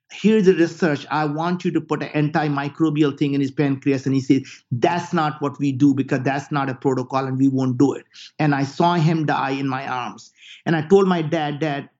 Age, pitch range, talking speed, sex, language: 50-69, 140-170 Hz, 230 wpm, male, English